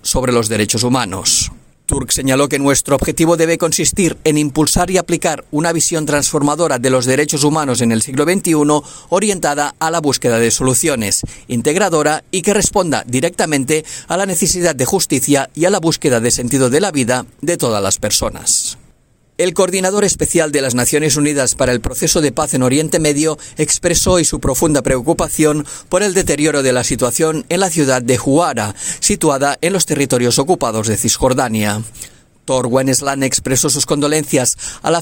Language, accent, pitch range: Spanish, Spanish, 130-165 Hz